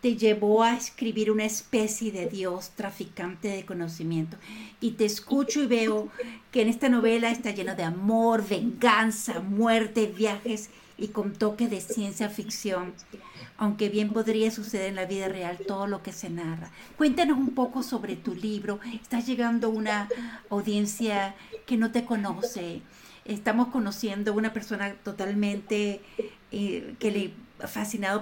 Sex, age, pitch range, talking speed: female, 40-59, 195-235 Hz, 145 wpm